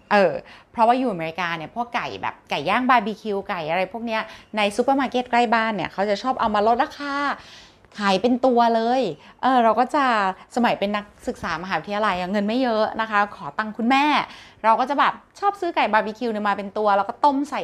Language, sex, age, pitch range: Thai, female, 20-39, 195-250 Hz